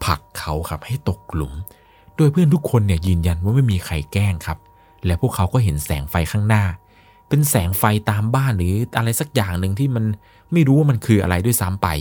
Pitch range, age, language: 90-125 Hz, 20-39, Thai